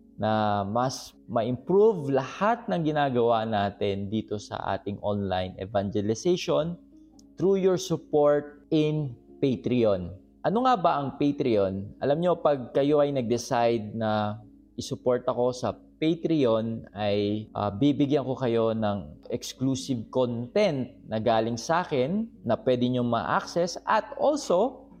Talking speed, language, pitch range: 120 wpm, Filipino, 110-155 Hz